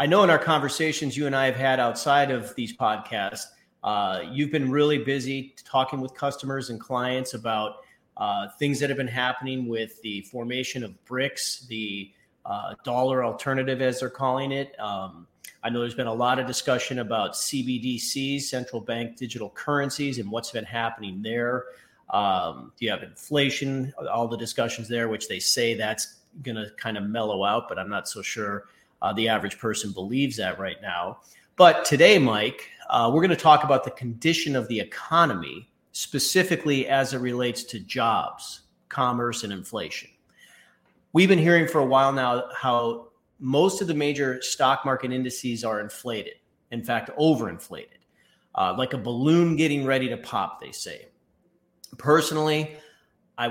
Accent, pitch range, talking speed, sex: American, 115-140 Hz, 170 wpm, male